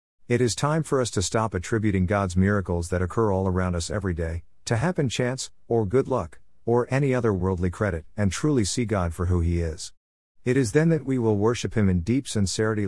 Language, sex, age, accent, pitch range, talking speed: English, male, 50-69, American, 90-115 Hz, 220 wpm